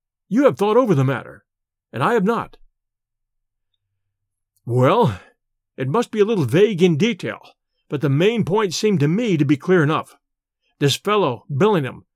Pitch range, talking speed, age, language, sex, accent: 135-205 Hz, 165 wpm, 50-69, English, male, American